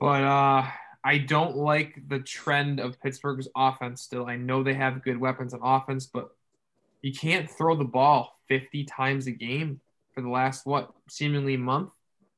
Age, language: 10-29, English